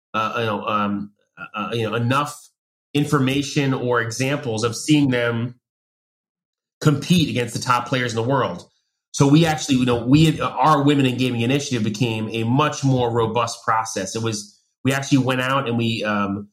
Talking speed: 165 wpm